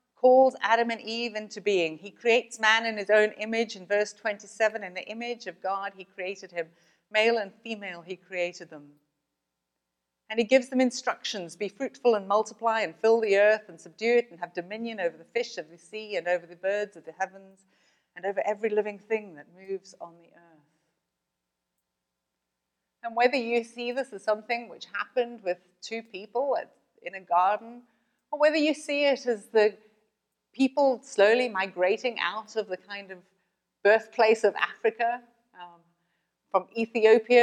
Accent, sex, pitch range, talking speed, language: British, female, 180-235 Hz, 175 wpm, English